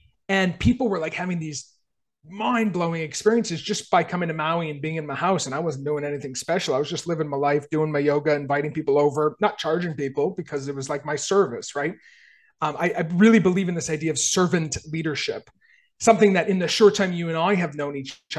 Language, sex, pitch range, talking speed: English, male, 150-190 Hz, 230 wpm